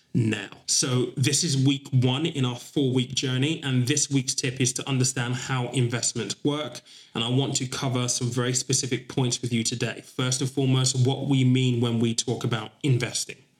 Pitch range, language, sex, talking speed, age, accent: 120-135 Hz, English, male, 190 wpm, 20-39, British